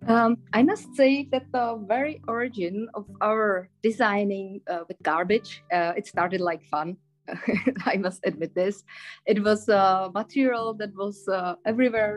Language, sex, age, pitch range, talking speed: Greek, female, 20-39, 180-215 Hz, 160 wpm